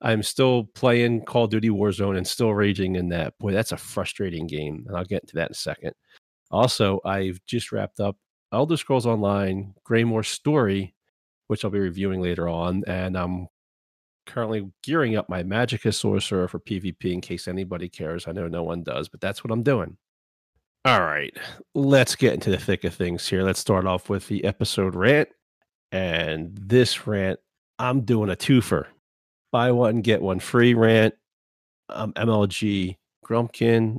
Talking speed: 175 wpm